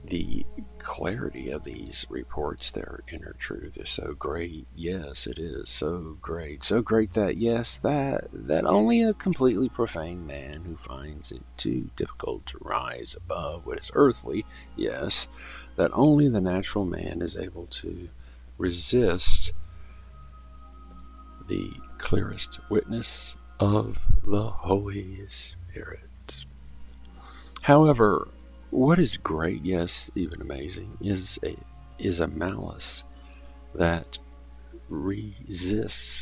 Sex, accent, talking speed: male, American, 115 wpm